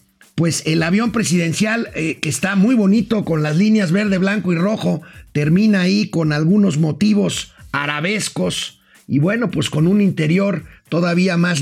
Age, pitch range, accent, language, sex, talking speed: 50-69, 160-215 Hz, Mexican, Spanish, male, 155 wpm